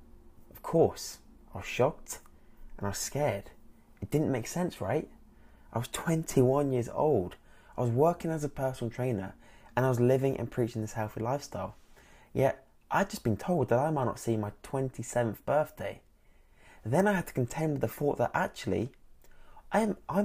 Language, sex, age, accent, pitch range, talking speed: English, male, 20-39, British, 110-150 Hz, 180 wpm